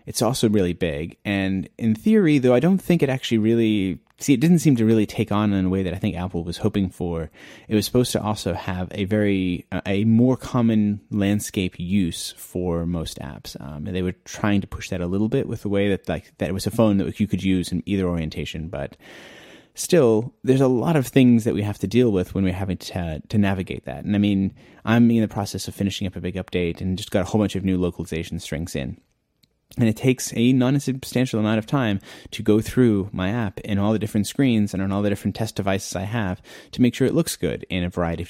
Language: English